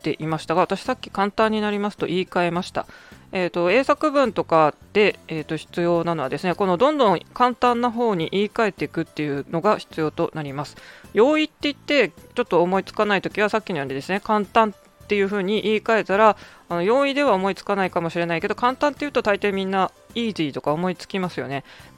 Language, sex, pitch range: Japanese, female, 165-225 Hz